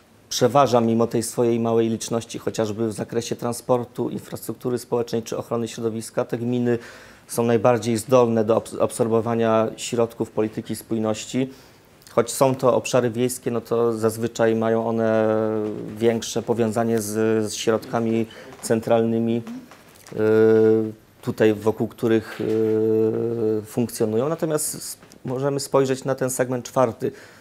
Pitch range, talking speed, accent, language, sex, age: 110-120 Hz, 110 wpm, native, Polish, male, 30-49